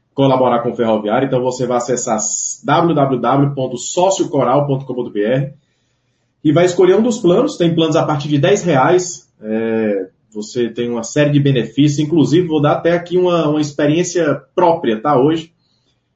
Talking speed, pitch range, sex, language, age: 140 wpm, 125-165 Hz, male, Portuguese, 20-39